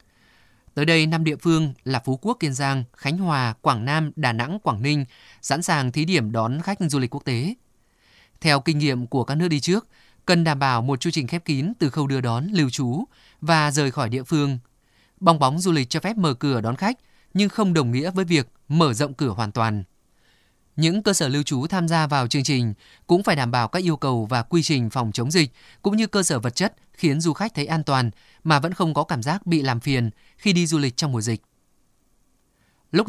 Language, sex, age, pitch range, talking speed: Vietnamese, male, 20-39, 130-165 Hz, 230 wpm